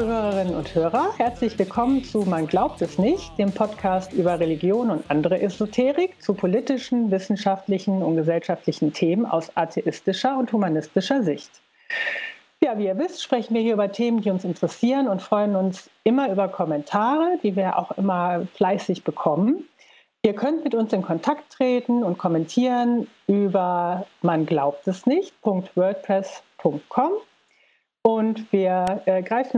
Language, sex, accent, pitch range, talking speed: German, female, German, 180-235 Hz, 140 wpm